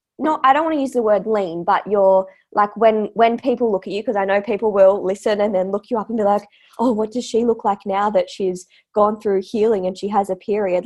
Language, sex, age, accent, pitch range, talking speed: English, female, 20-39, Australian, 185-225 Hz, 270 wpm